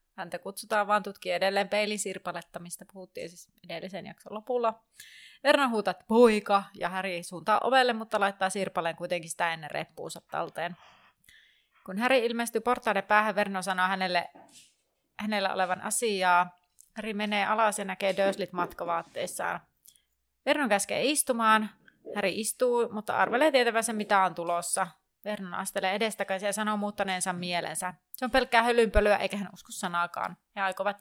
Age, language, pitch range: 30-49, Finnish, 185-230 Hz